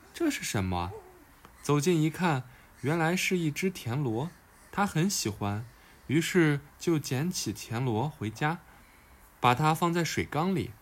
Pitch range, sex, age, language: 110-180 Hz, male, 20-39, Chinese